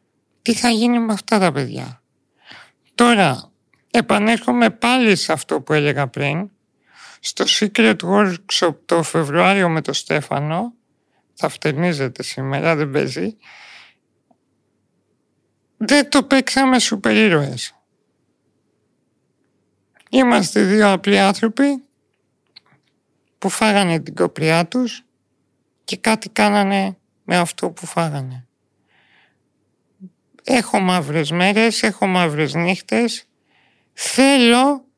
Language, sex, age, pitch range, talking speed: Greek, male, 50-69, 160-220 Hz, 95 wpm